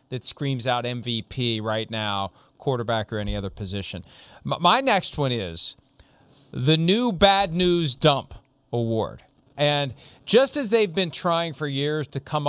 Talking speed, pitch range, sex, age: 150 wpm, 140-210 Hz, male, 40-59